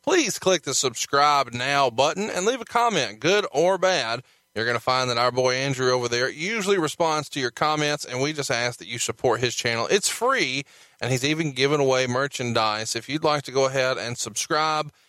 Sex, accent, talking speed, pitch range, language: male, American, 210 wpm, 125-165 Hz, English